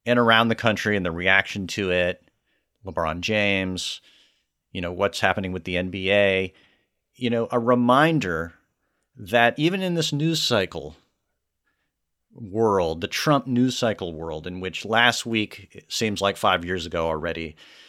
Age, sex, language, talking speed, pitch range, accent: 40-59, male, English, 150 wpm, 95-125 Hz, American